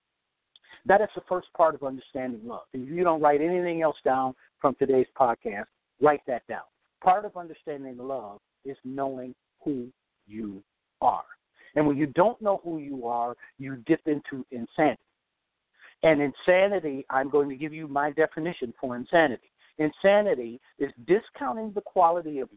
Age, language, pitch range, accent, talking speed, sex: 60-79, English, 125-170 Hz, American, 155 wpm, male